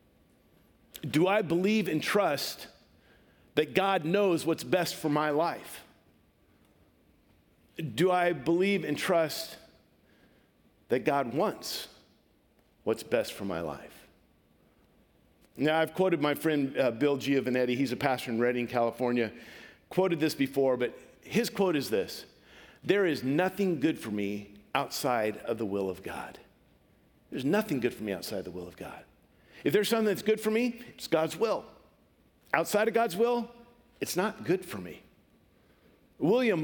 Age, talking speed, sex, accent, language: 50-69, 145 wpm, male, American, English